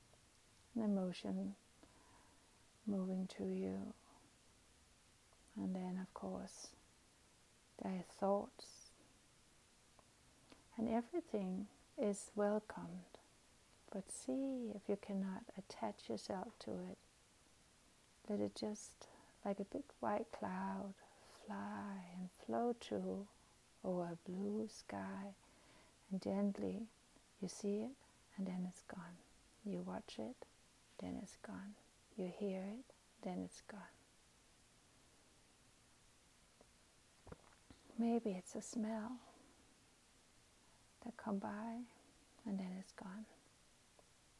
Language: English